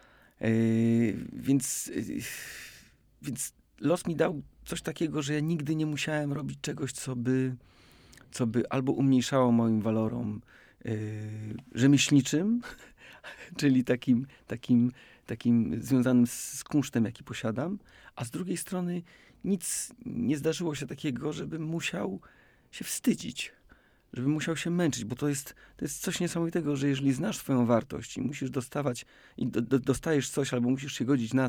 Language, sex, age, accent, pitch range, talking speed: Polish, male, 40-59, native, 120-155 Hz, 145 wpm